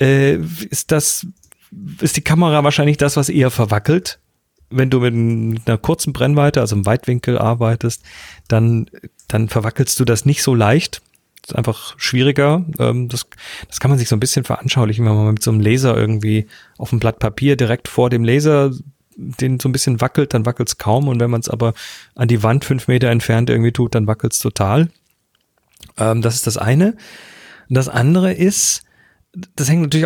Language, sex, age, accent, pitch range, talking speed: German, male, 40-59, German, 115-150 Hz, 185 wpm